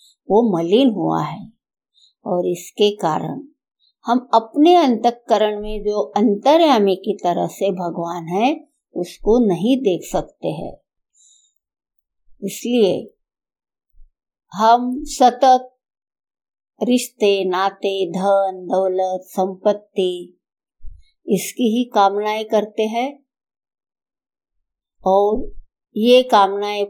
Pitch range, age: 185-250 Hz, 50-69